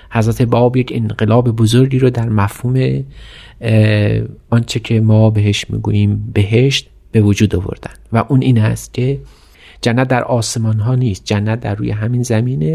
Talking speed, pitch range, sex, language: 150 wpm, 110-130 Hz, male, Persian